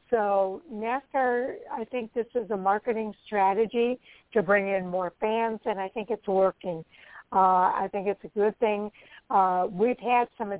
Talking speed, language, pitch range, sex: 175 wpm, English, 190-215 Hz, female